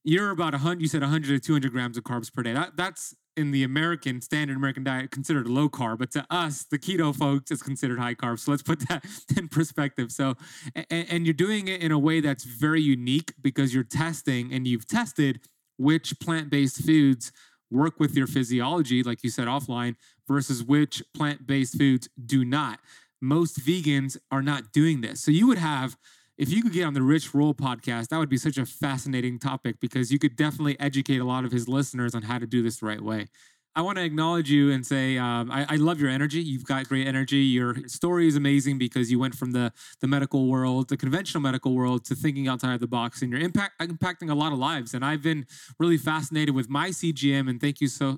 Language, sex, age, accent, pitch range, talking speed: English, male, 30-49, American, 130-155 Hz, 220 wpm